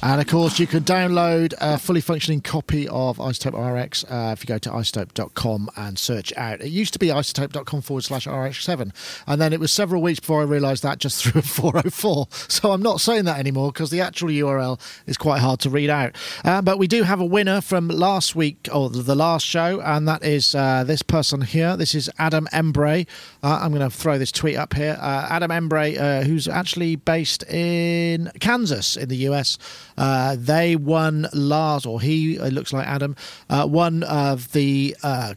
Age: 40-59